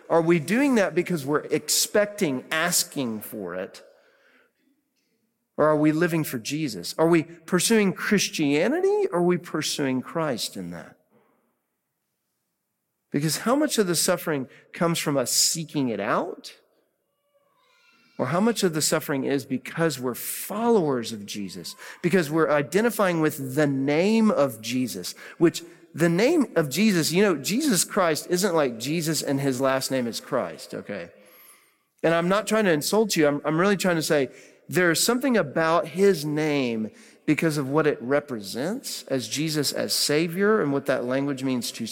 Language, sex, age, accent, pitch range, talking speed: English, male, 40-59, American, 140-205 Hz, 160 wpm